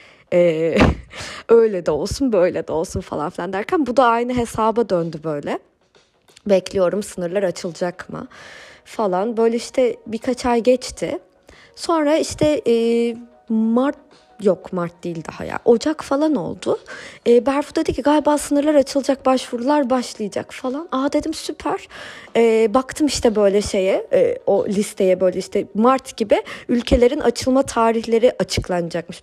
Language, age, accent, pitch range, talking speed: Turkish, 30-49, native, 190-255 Hz, 135 wpm